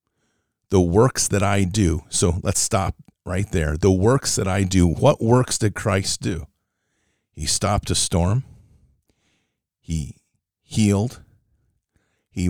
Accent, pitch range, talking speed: American, 90-110 Hz, 130 wpm